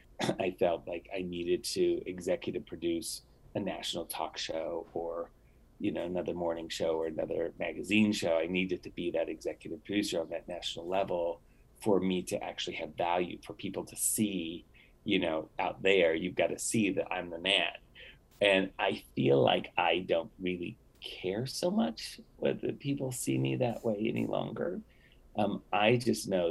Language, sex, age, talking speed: English, male, 30-49, 175 wpm